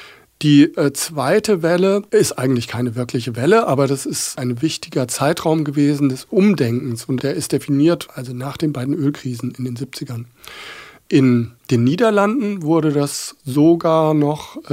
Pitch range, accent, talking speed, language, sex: 135-165 Hz, German, 145 wpm, German, male